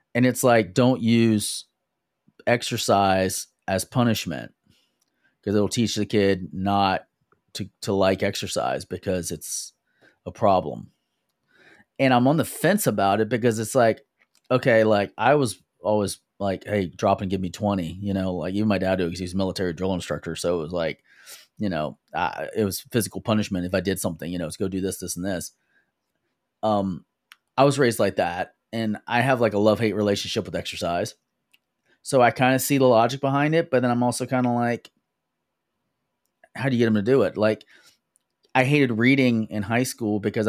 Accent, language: American, English